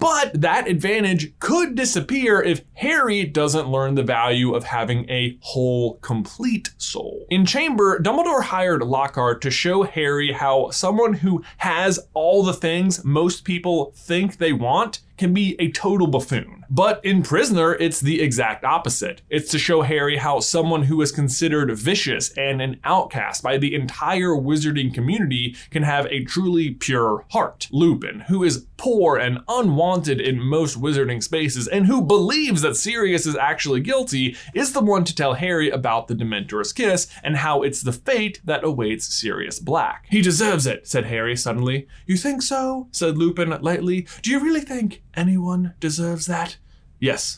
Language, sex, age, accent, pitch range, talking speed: English, male, 20-39, American, 135-185 Hz, 165 wpm